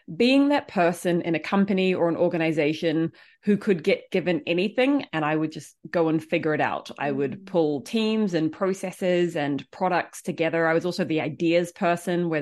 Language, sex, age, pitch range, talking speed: English, female, 30-49, 155-190 Hz, 190 wpm